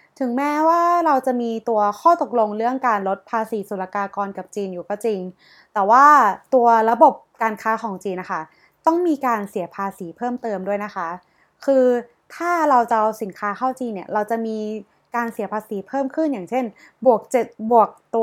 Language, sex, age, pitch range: Thai, female, 20-39, 195-250 Hz